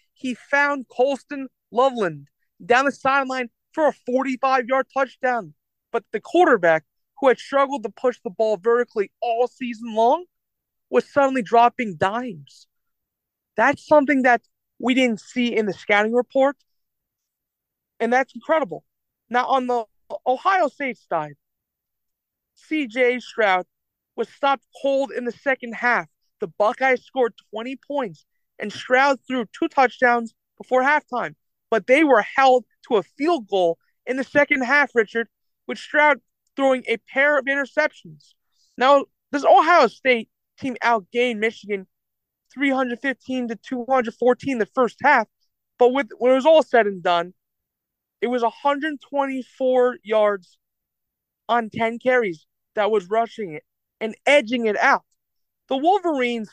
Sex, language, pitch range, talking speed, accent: male, English, 225-275 Hz, 135 wpm, American